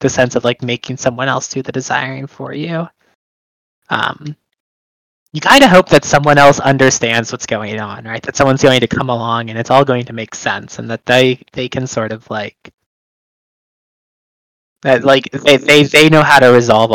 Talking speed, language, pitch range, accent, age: 195 wpm, English, 115-150 Hz, American, 20-39